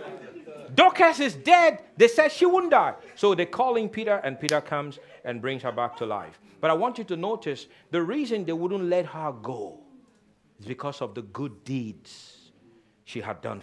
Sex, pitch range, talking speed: male, 125-175 Hz, 195 wpm